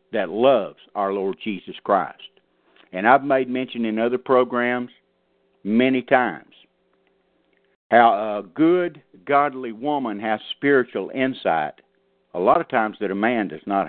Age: 60-79